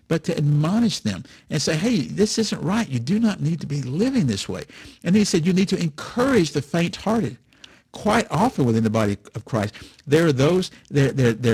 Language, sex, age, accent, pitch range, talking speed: English, male, 60-79, American, 115-165 Hz, 205 wpm